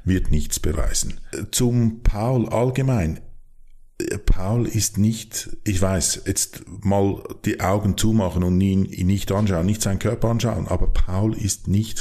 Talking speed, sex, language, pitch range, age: 140 wpm, male, German, 85-105 Hz, 50-69